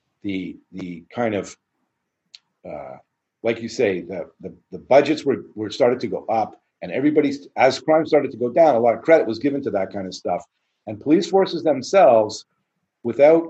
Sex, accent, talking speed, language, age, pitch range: male, American, 185 wpm, English, 50-69, 110-150 Hz